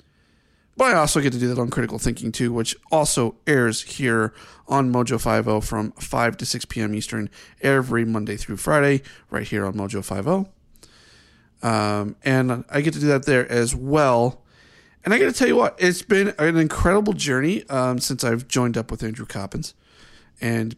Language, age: English, 40-59